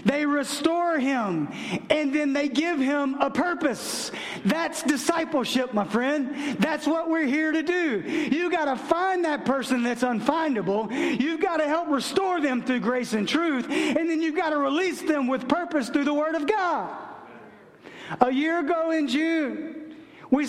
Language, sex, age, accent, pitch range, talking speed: English, male, 40-59, American, 205-300 Hz, 170 wpm